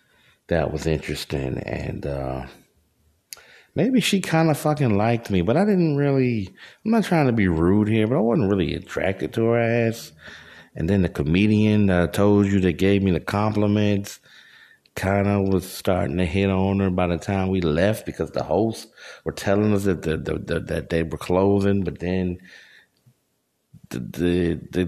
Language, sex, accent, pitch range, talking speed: English, male, American, 85-105 Hz, 180 wpm